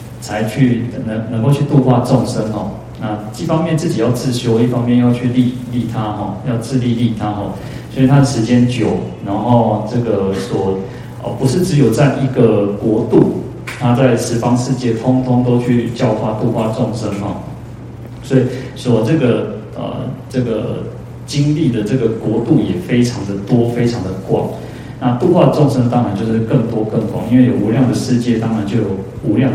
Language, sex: Chinese, male